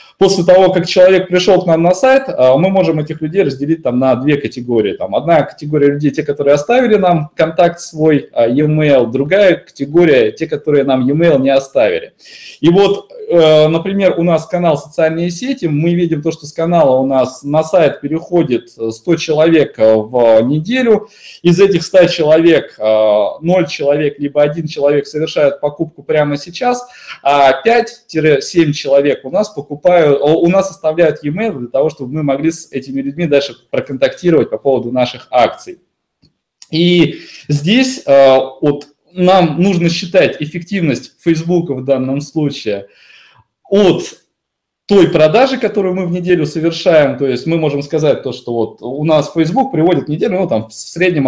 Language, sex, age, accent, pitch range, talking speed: Russian, male, 20-39, native, 140-180 Hz, 155 wpm